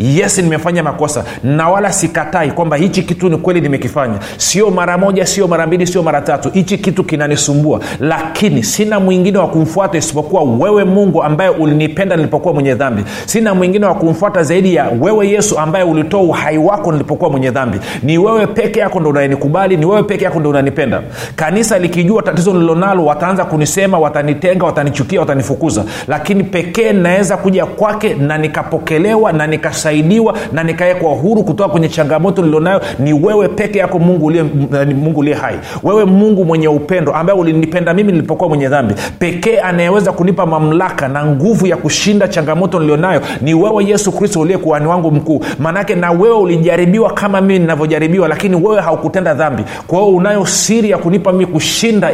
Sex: male